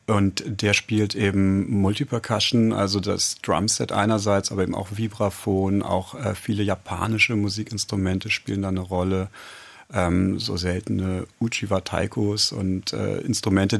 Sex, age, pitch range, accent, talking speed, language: male, 40-59, 100-115 Hz, German, 130 wpm, German